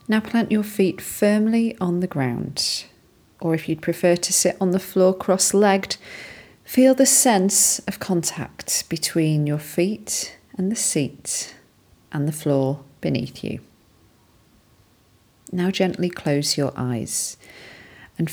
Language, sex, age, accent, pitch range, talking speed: English, female, 40-59, British, 140-190 Hz, 130 wpm